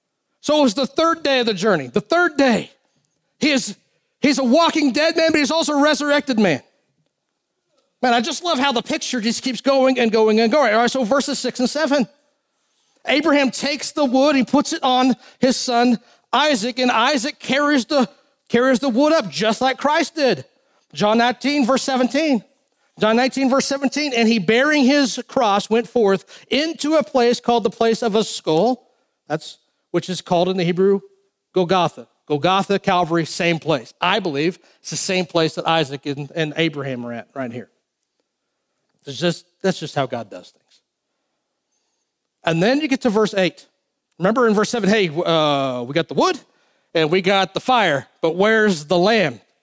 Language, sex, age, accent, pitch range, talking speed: English, male, 40-59, American, 185-275 Hz, 185 wpm